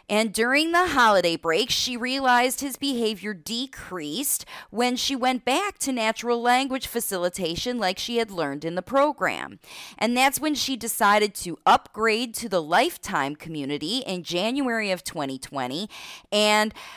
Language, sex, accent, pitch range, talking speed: English, female, American, 180-255 Hz, 145 wpm